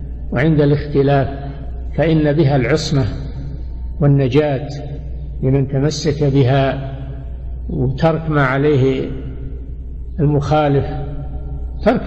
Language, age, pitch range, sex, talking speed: Arabic, 60-79, 105-155 Hz, male, 70 wpm